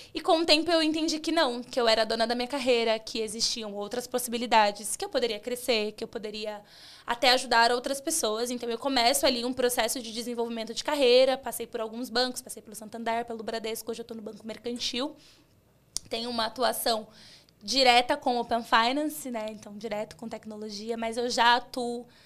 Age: 20-39